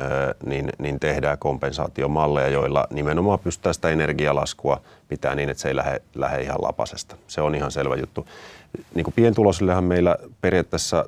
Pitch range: 75-95 Hz